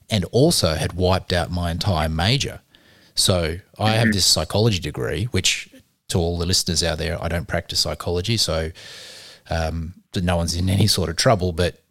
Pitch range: 85-100 Hz